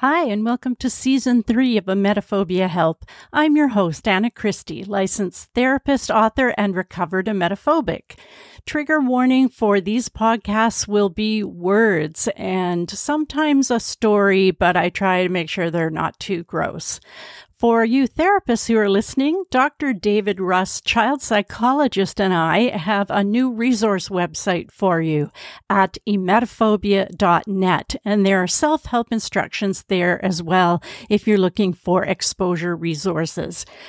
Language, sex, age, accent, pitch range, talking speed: English, female, 50-69, American, 185-240 Hz, 140 wpm